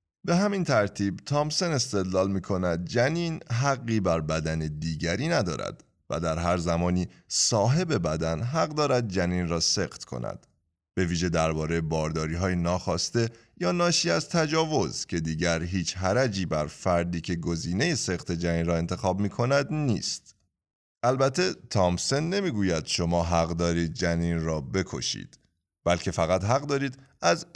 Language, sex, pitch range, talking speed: Persian, male, 85-120 Hz, 135 wpm